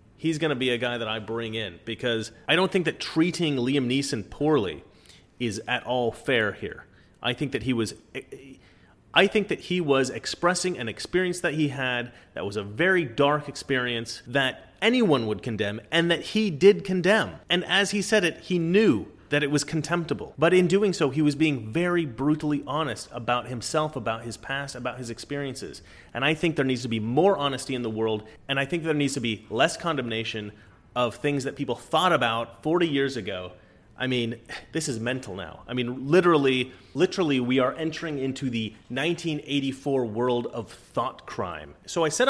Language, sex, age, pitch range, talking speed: English, male, 30-49, 115-160 Hz, 195 wpm